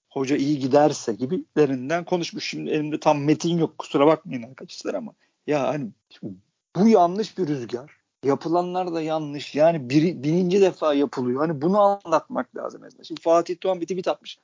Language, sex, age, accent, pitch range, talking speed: Turkish, male, 50-69, native, 145-175 Hz, 150 wpm